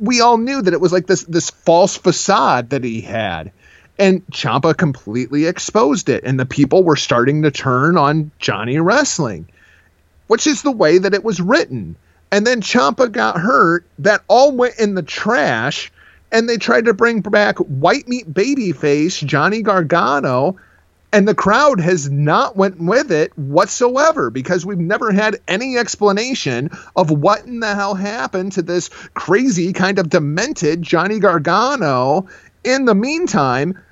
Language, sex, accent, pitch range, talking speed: English, male, American, 155-225 Hz, 165 wpm